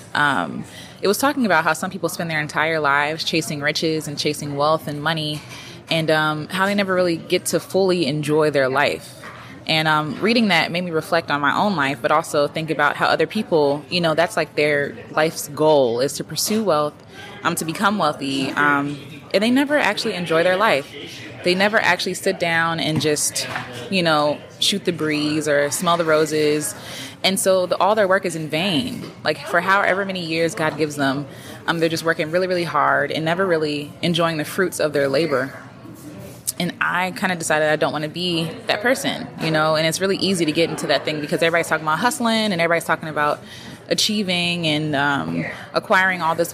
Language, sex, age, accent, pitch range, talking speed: English, female, 20-39, American, 150-175 Hz, 205 wpm